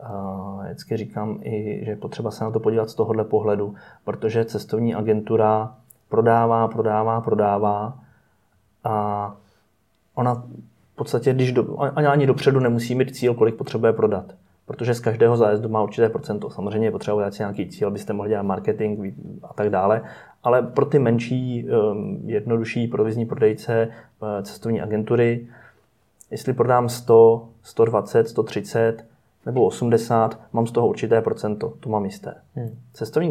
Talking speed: 135 wpm